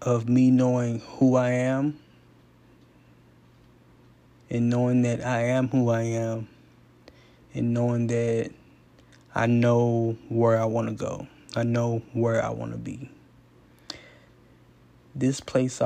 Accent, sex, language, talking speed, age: American, male, English, 125 wpm, 20-39